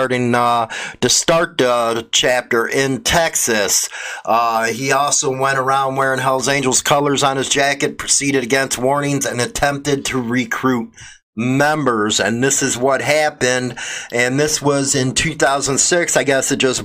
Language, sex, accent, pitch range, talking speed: English, male, American, 130-180 Hz, 155 wpm